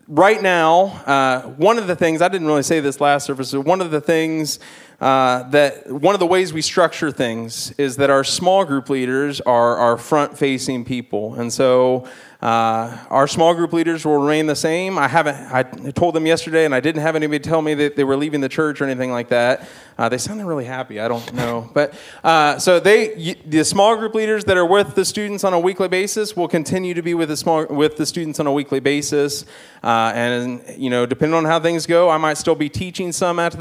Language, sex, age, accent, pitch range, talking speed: English, male, 20-39, American, 130-165 Hz, 225 wpm